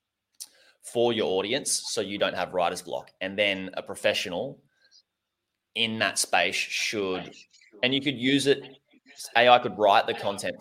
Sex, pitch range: male, 95-125 Hz